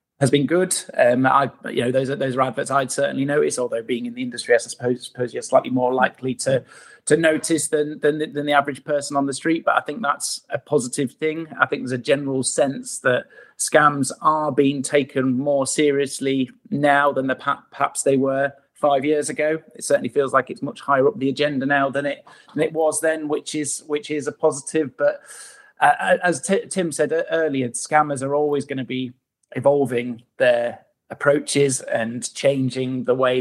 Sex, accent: male, British